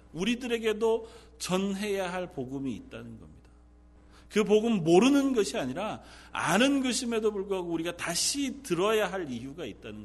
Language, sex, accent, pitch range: Korean, male, native, 170-230 Hz